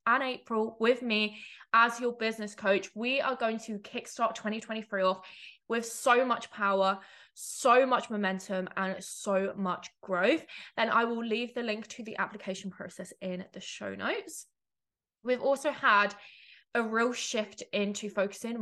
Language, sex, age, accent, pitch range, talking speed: English, female, 20-39, British, 195-235 Hz, 155 wpm